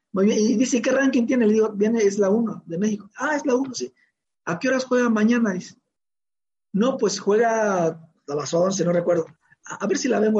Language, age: Spanish, 50-69